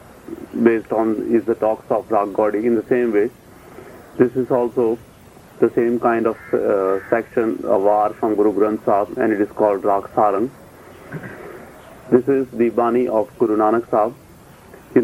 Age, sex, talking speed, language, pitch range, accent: 40-59, male, 165 wpm, English, 110-120 Hz, Indian